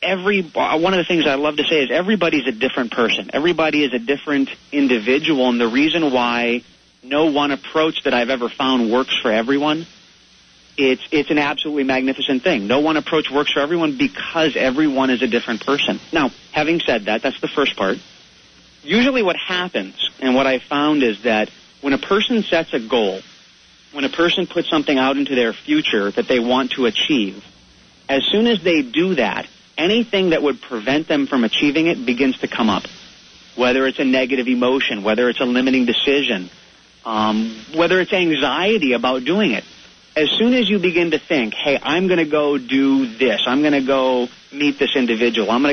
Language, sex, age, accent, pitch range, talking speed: English, male, 30-49, American, 125-170 Hz, 190 wpm